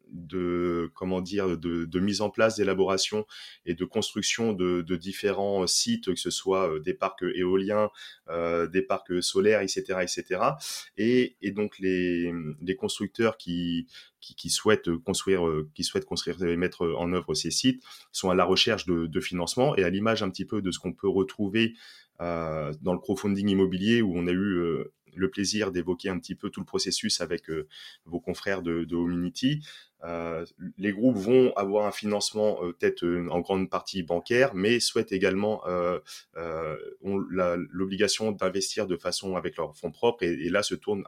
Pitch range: 90-105 Hz